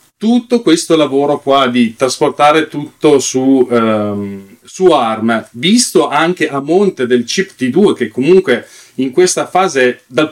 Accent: native